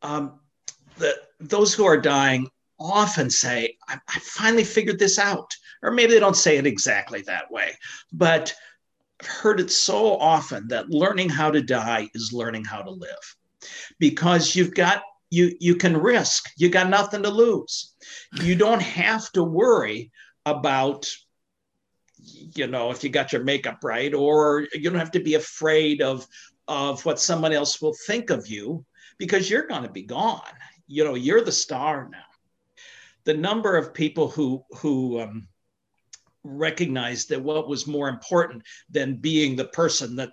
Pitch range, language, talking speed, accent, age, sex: 130-185 Hz, English, 165 wpm, American, 50-69, male